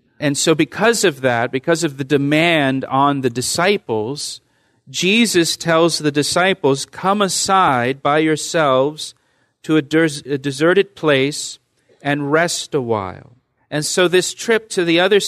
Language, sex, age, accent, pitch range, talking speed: English, male, 40-59, American, 130-155 Hz, 140 wpm